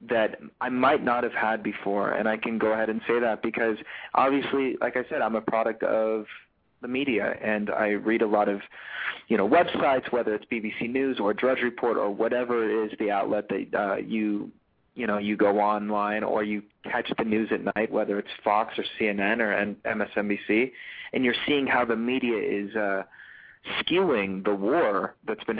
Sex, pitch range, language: male, 105-120 Hz, English